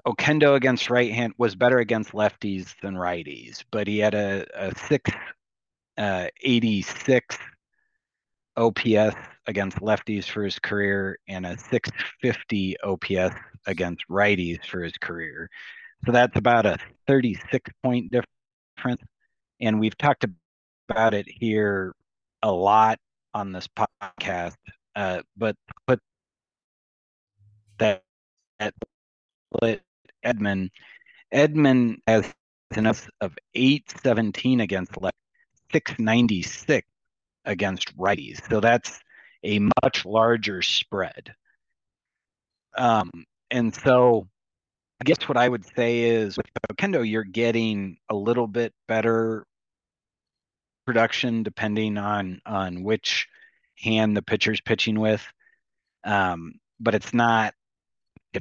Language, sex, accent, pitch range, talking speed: English, male, American, 100-120 Hz, 115 wpm